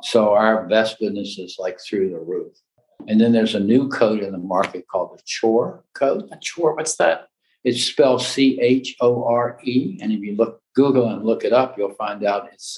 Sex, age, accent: male, 60-79, American